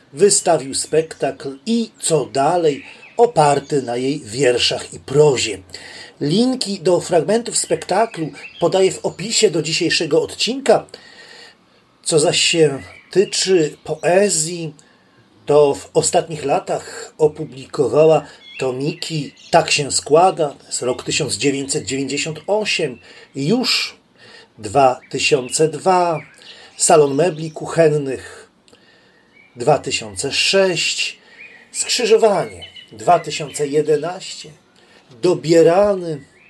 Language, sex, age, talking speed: Polish, male, 30-49, 75 wpm